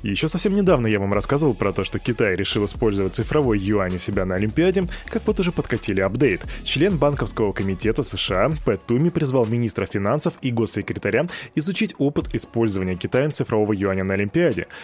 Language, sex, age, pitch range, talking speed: Russian, male, 20-39, 105-155 Hz, 170 wpm